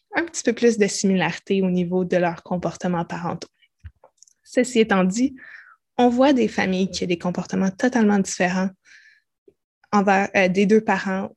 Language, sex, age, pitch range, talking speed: French, female, 20-39, 190-220 Hz, 160 wpm